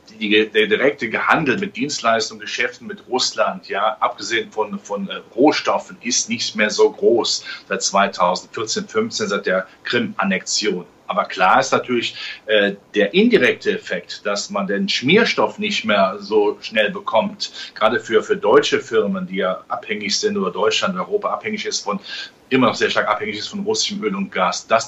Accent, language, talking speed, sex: German, German, 170 wpm, male